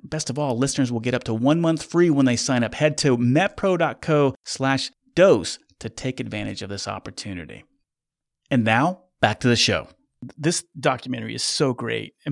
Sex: male